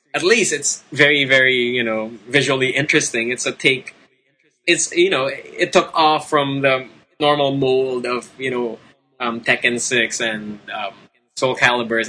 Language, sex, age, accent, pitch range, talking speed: English, male, 20-39, Filipino, 120-145 Hz, 160 wpm